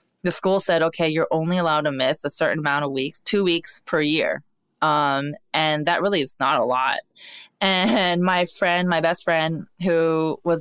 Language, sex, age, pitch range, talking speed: English, female, 20-39, 160-195 Hz, 190 wpm